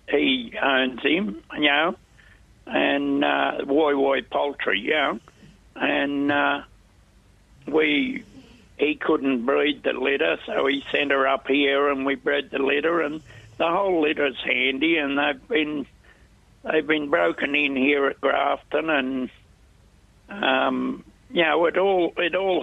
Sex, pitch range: male, 130-155 Hz